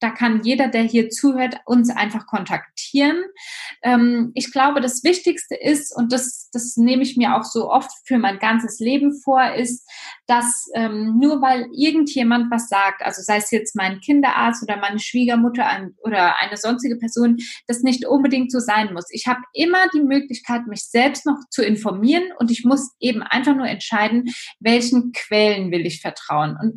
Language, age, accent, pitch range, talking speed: German, 20-39, German, 220-275 Hz, 175 wpm